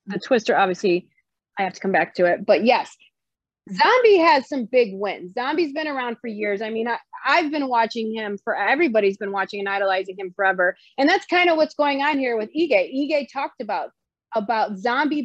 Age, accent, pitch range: 30-49, American, 210-280 Hz